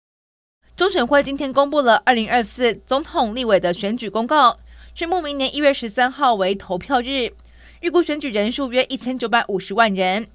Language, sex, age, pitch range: Chinese, female, 20-39, 220-290 Hz